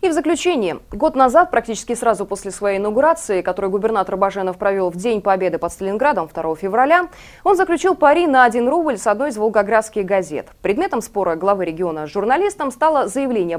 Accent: native